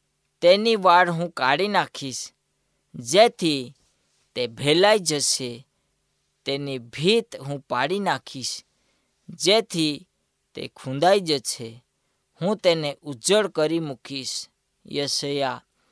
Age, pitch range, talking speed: 20-39, 135-185 Hz, 90 wpm